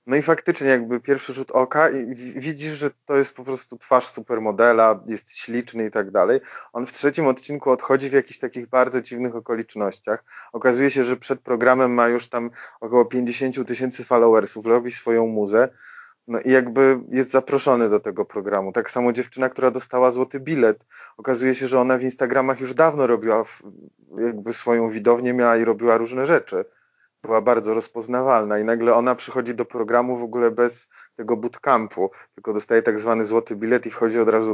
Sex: male